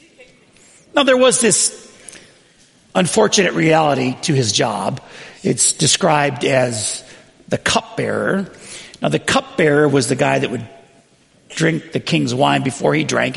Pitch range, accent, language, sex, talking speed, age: 130-185 Hz, American, English, male, 130 wpm, 50-69